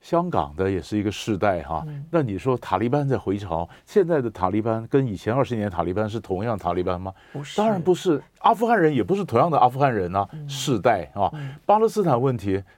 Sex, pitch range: male, 100-145 Hz